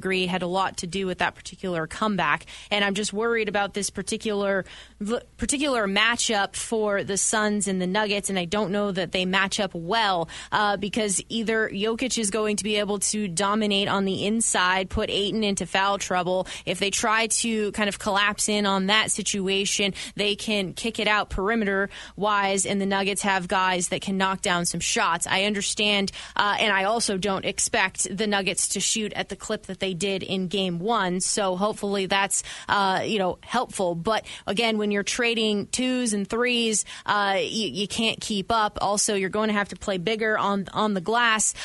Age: 20-39